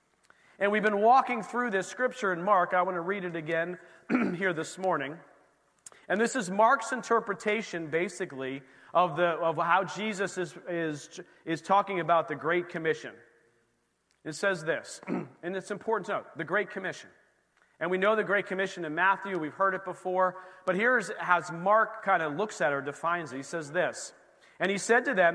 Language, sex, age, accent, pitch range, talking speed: English, male, 40-59, American, 155-200 Hz, 190 wpm